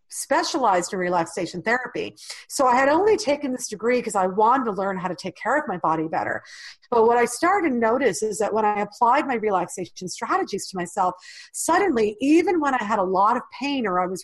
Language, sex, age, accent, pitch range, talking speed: English, female, 40-59, American, 195-280 Hz, 220 wpm